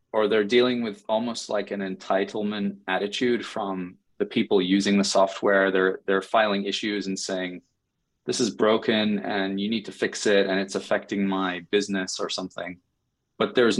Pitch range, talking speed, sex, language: 95-105 Hz, 170 wpm, male, English